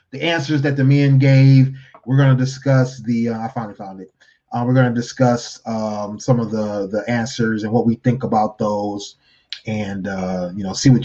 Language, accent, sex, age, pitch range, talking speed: English, American, male, 30-49, 115-140 Hz, 205 wpm